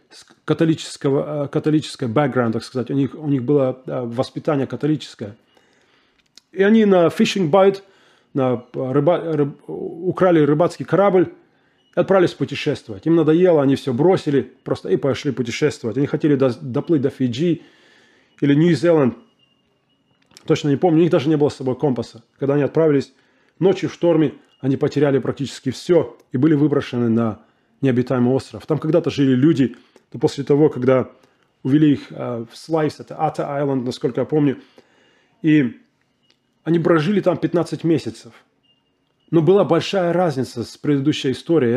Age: 20-39